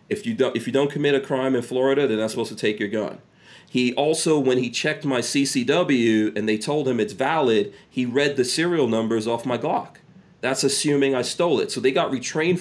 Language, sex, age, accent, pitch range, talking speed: English, male, 40-59, American, 120-150 Hz, 230 wpm